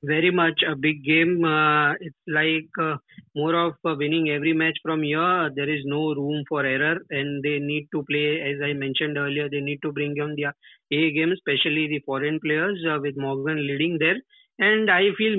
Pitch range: 145-165 Hz